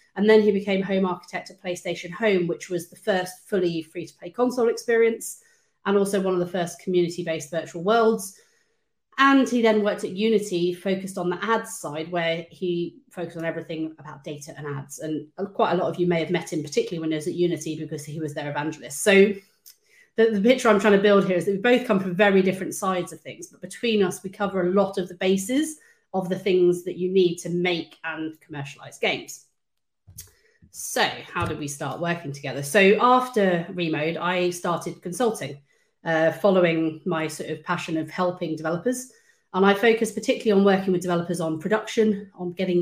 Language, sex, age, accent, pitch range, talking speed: English, female, 30-49, British, 170-210 Hz, 200 wpm